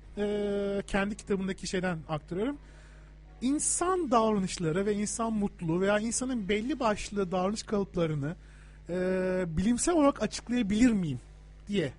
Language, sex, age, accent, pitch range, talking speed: Turkish, male, 40-59, native, 180-245 Hz, 110 wpm